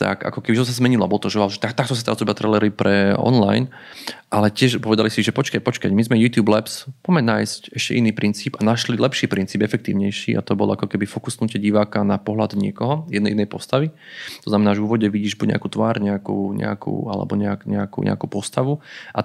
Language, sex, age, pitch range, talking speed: Slovak, male, 30-49, 100-115 Hz, 210 wpm